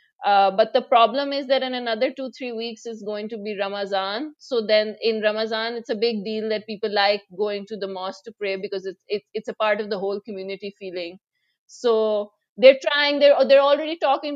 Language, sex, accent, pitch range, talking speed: English, female, Indian, 215-265 Hz, 215 wpm